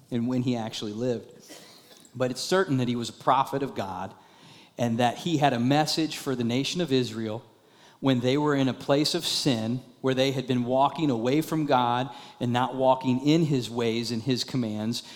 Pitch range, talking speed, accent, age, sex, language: 125-160 Hz, 200 wpm, American, 40-59, male, English